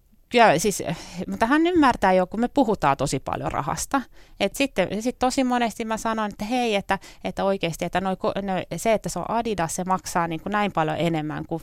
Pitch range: 160-205 Hz